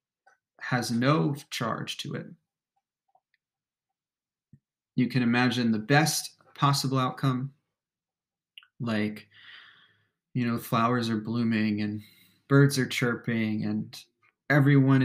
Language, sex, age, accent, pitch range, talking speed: English, male, 20-39, American, 110-135 Hz, 95 wpm